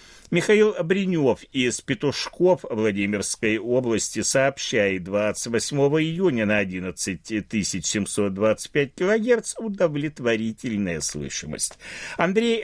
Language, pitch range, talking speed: Russian, 110-165 Hz, 70 wpm